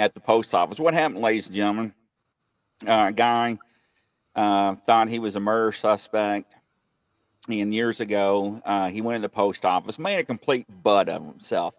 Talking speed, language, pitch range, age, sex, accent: 180 wpm, English, 105-140 Hz, 50-69, male, American